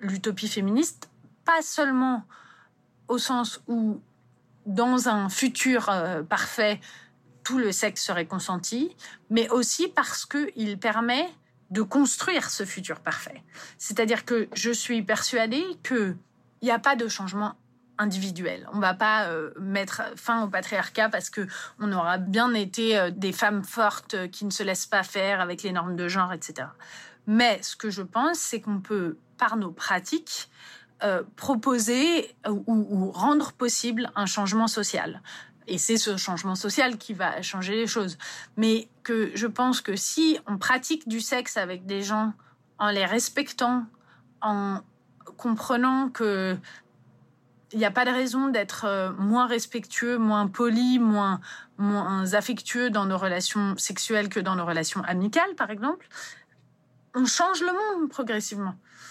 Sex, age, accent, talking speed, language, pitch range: female, 30-49, French, 150 wpm, French, 195-245 Hz